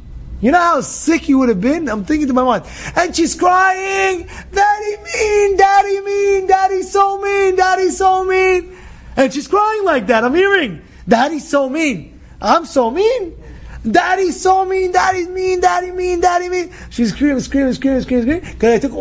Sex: male